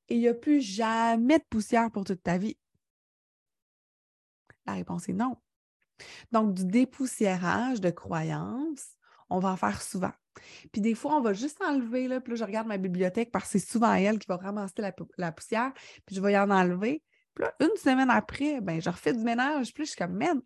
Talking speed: 210 wpm